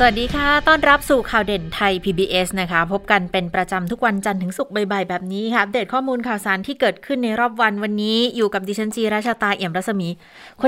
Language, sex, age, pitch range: Thai, female, 20-39, 180-220 Hz